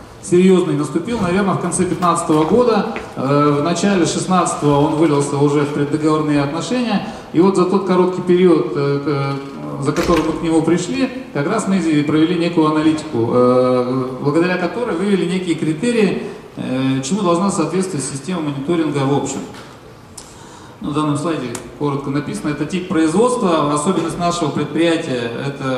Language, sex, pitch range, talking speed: Russian, male, 140-180 Hz, 135 wpm